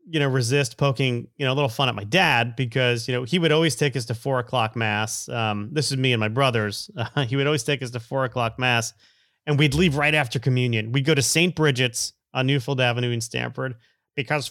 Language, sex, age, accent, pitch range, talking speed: English, male, 30-49, American, 115-145 Hz, 240 wpm